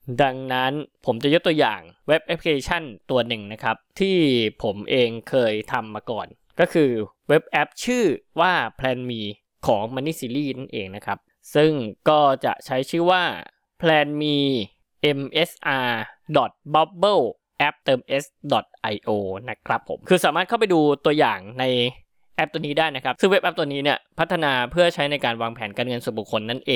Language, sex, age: Thai, male, 20-39